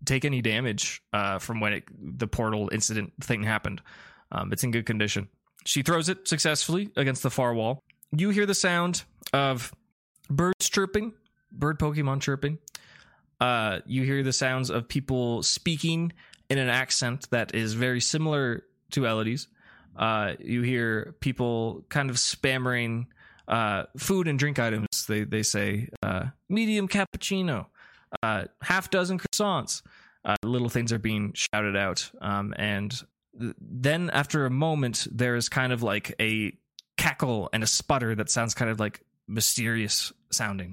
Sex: male